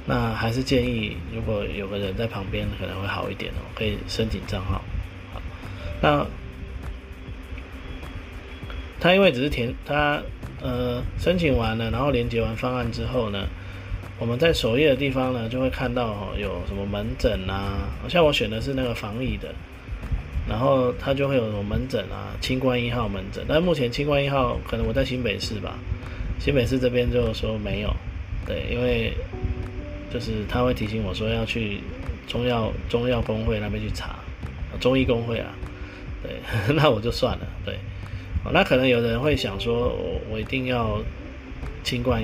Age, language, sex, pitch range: 20-39, Chinese, male, 95-120 Hz